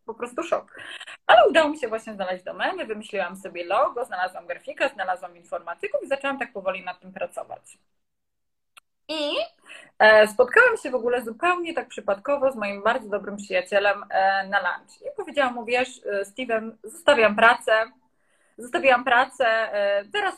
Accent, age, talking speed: native, 20-39, 145 wpm